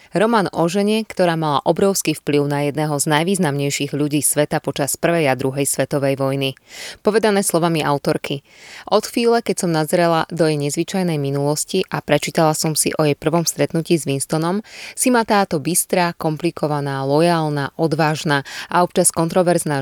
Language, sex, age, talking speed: Slovak, female, 20-39, 155 wpm